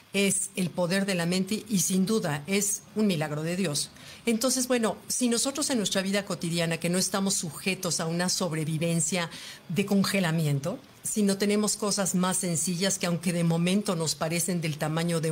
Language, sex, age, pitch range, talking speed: Spanish, female, 50-69, 165-200 Hz, 180 wpm